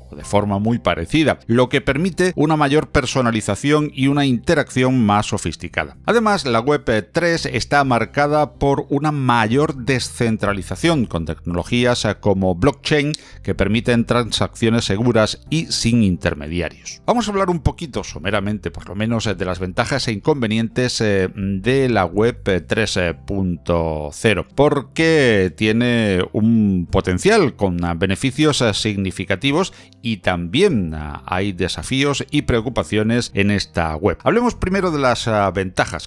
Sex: male